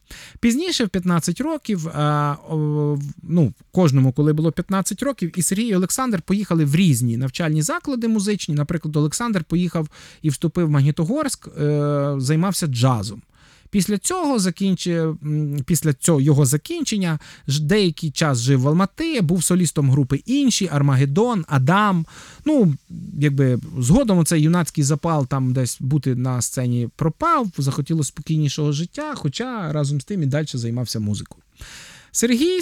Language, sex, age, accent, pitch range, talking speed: Ukrainian, male, 20-39, native, 145-200 Hz, 130 wpm